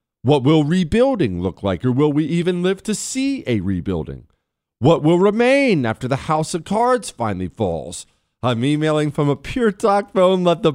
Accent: American